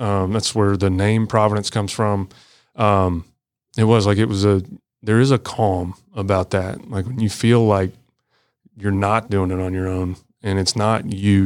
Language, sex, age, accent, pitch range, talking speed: English, male, 30-49, American, 100-115 Hz, 195 wpm